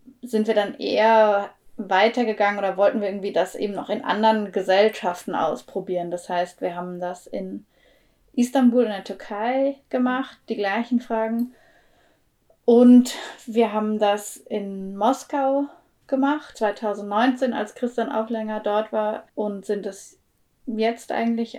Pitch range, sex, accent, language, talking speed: 210-245 Hz, female, German, German, 135 wpm